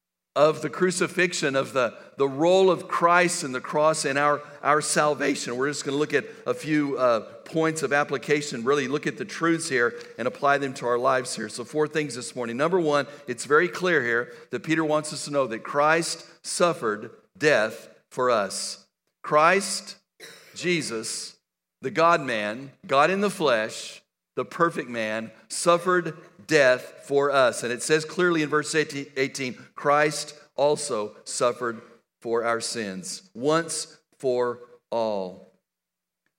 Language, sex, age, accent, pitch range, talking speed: English, male, 50-69, American, 125-160 Hz, 160 wpm